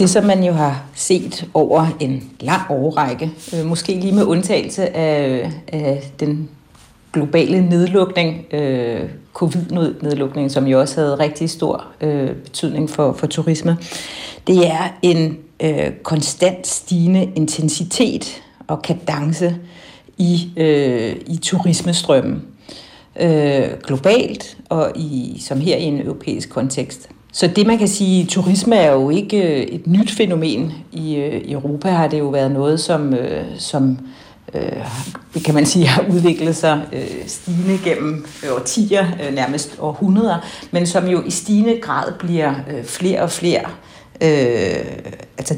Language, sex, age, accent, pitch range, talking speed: Danish, female, 60-79, native, 150-185 Hz, 120 wpm